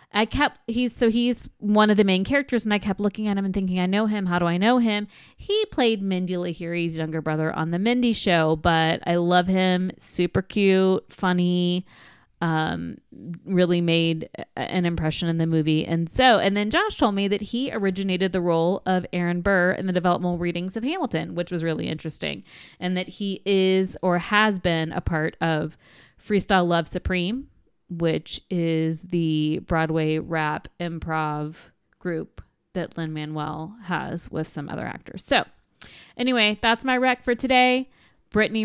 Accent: American